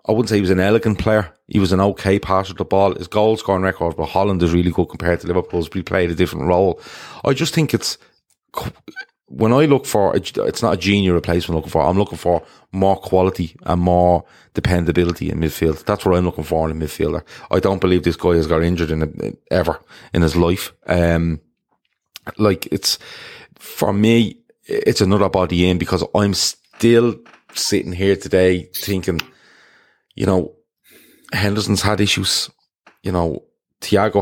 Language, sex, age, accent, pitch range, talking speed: English, male, 30-49, Irish, 85-100 Hz, 185 wpm